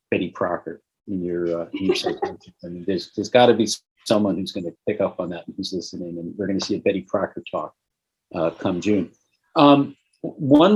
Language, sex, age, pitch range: English, male, 50-69, 95-115 Hz